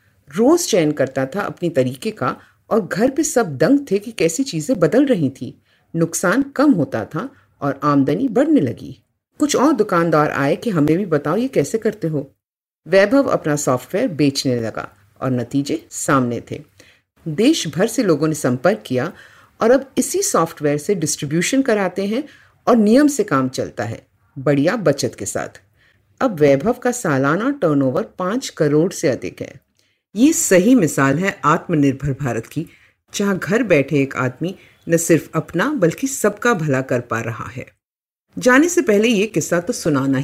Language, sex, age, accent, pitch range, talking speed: Hindi, female, 50-69, native, 140-225 Hz, 165 wpm